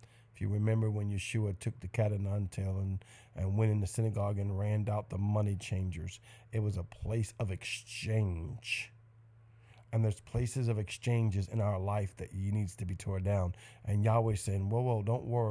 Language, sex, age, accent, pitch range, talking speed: English, male, 50-69, American, 95-115 Hz, 190 wpm